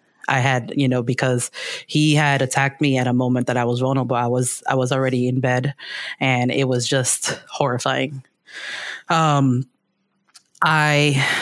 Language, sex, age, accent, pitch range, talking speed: English, female, 30-49, American, 130-145 Hz, 160 wpm